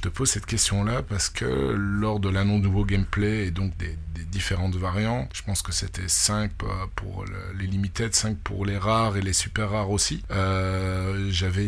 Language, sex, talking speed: French, male, 185 wpm